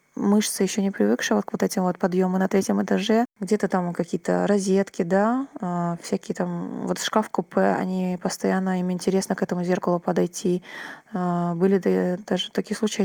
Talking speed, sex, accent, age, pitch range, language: 160 wpm, female, native, 20-39, 180-205 Hz, Ukrainian